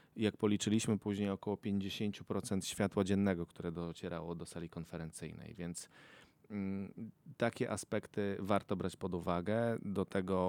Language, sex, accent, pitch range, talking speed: Polish, male, native, 90-105 Hz, 125 wpm